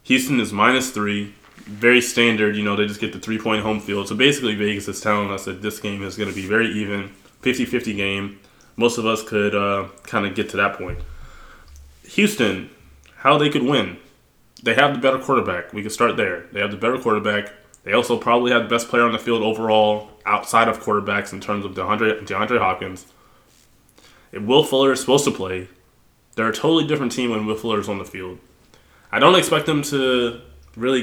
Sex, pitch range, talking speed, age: male, 100-120 Hz, 205 wpm, 20-39